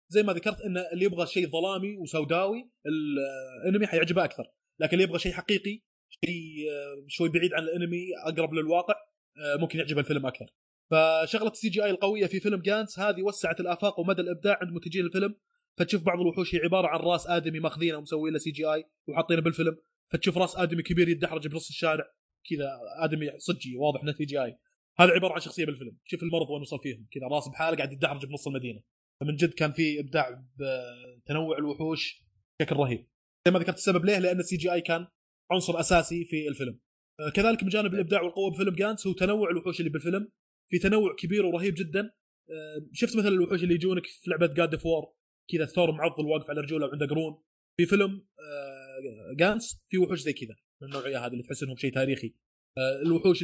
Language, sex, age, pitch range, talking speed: Arabic, male, 20-39, 150-185 Hz, 180 wpm